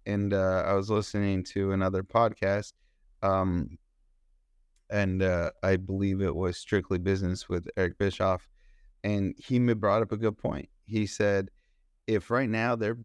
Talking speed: 150 wpm